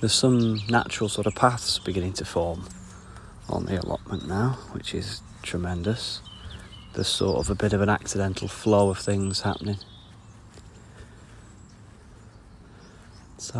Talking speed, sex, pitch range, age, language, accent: 130 wpm, male, 90-105 Hz, 30-49, English, British